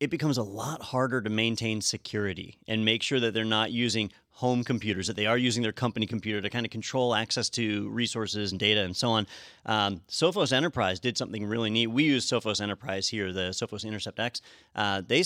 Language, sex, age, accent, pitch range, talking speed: English, male, 30-49, American, 100-120 Hz, 210 wpm